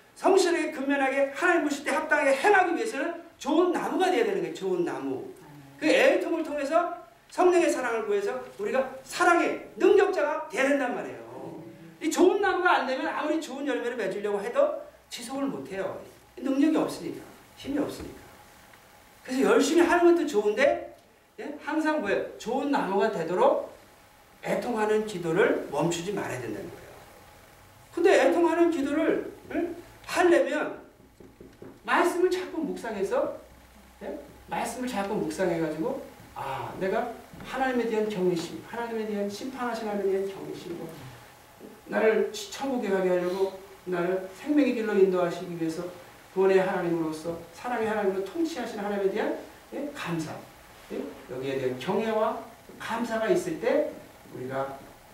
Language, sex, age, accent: Korean, male, 40-59, native